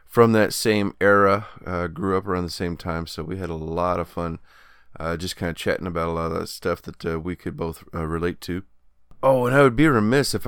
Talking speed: 250 wpm